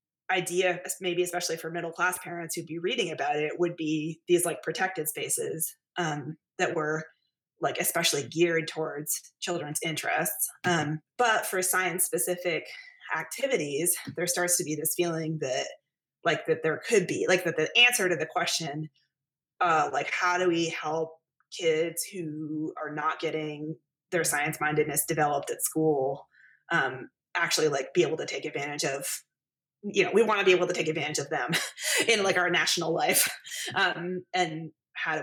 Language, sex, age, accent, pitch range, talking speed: English, female, 20-39, American, 155-180 Hz, 170 wpm